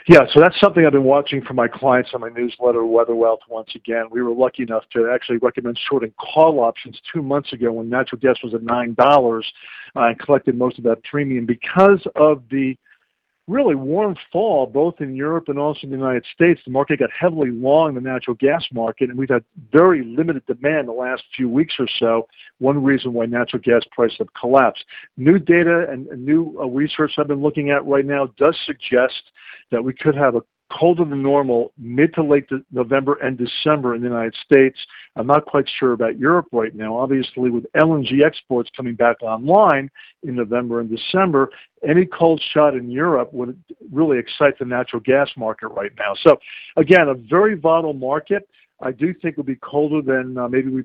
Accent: American